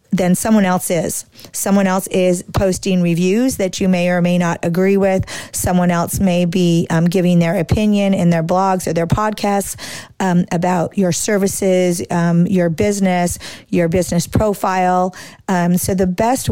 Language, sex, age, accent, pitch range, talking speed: English, female, 40-59, American, 175-200 Hz, 165 wpm